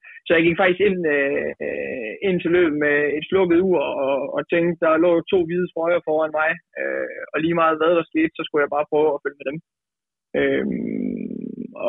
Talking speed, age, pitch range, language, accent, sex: 190 wpm, 20-39, 150-185 Hz, Danish, native, male